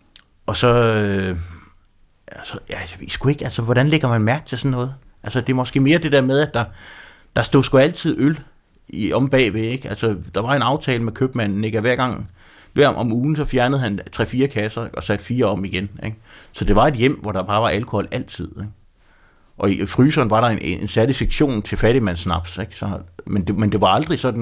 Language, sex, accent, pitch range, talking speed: Danish, male, native, 90-120 Hz, 220 wpm